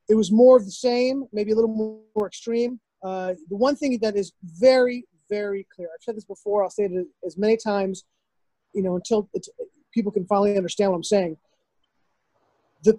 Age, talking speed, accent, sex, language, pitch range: 30-49, 195 wpm, American, male, English, 195-240 Hz